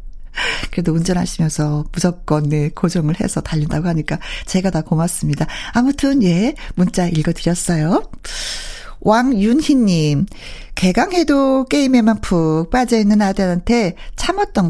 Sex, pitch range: female, 170-225 Hz